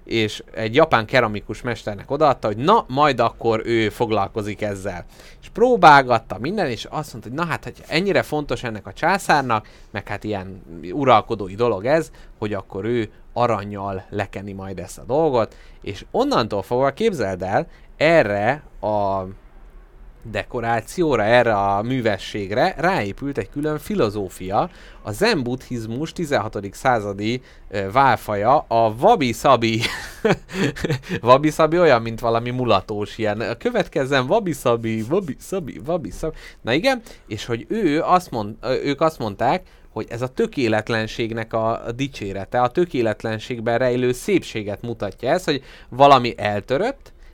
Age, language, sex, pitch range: 30-49, Hungarian, male, 105-130 Hz